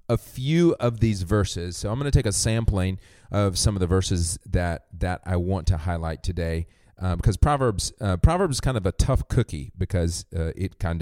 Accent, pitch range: American, 90-110 Hz